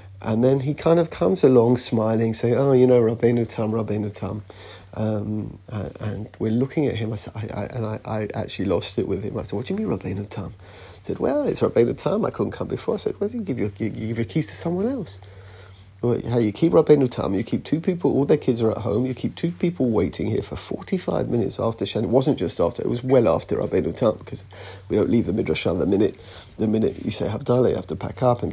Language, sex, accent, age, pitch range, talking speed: English, male, British, 40-59, 105-130 Hz, 250 wpm